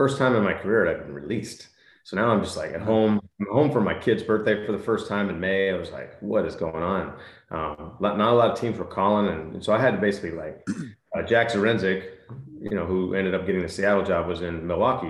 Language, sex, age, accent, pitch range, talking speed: English, male, 30-49, American, 90-100 Hz, 260 wpm